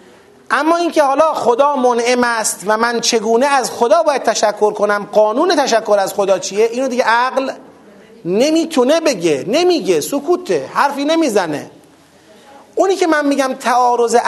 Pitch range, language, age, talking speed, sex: 215-275 Hz, Persian, 30-49, 140 wpm, male